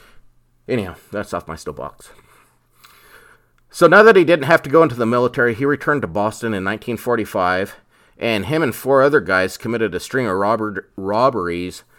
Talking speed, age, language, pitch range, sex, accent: 175 wpm, 30-49, English, 90-115 Hz, male, American